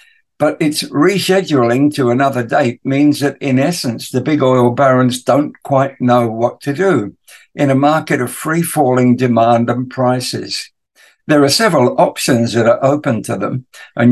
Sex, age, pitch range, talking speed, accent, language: male, 60-79, 125-150 Hz, 160 wpm, British, English